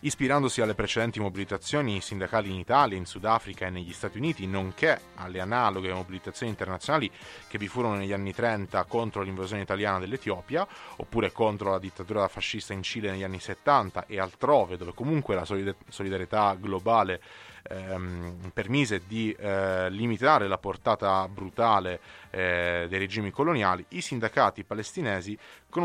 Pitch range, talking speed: 95-120 Hz, 140 wpm